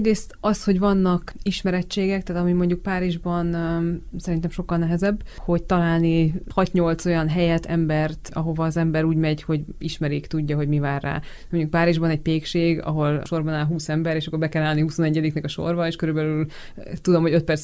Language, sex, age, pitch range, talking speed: Hungarian, female, 20-39, 150-170 Hz, 185 wpm